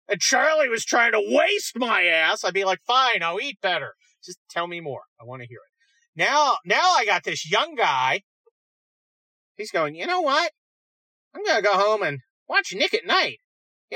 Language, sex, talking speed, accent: English, male, 200 wpm, American